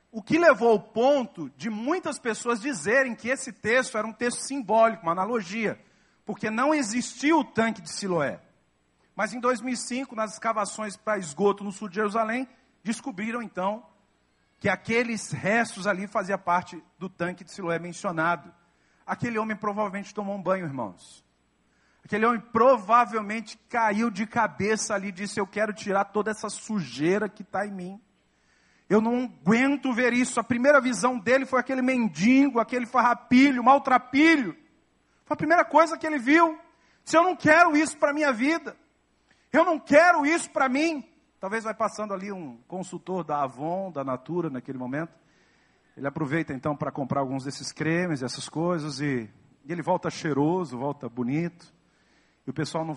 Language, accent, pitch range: Portuguese, Brazilian, 170-250 Hz